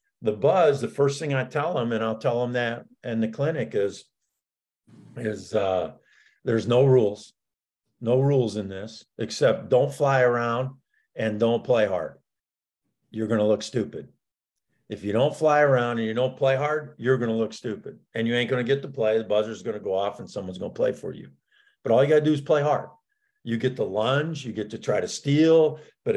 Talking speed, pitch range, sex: 220 wpm, 110-140 Hz, male